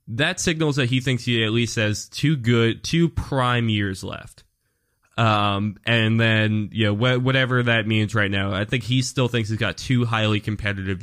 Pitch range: 100-125 Hz